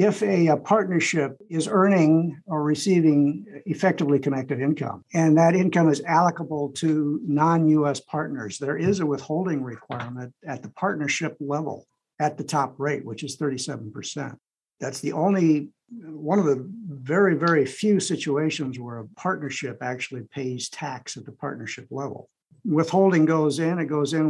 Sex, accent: male, American